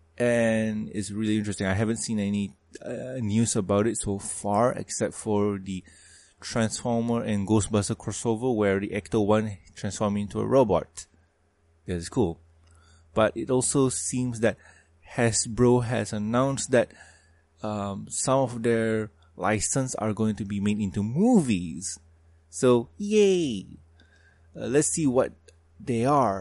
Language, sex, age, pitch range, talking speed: English, male, 20-39, 90-120 Hz, 140 wpm